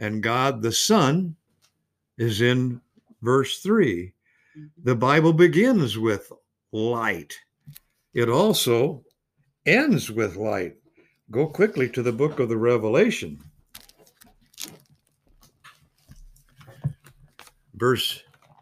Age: 60-79